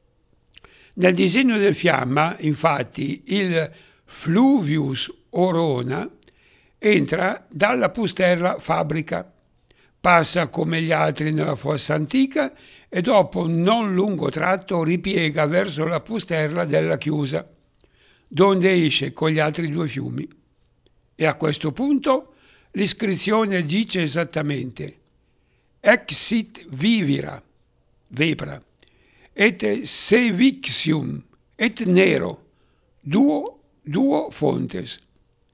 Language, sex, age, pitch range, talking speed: Italian, male, 60-79, 150-195 Hz, 95 wpm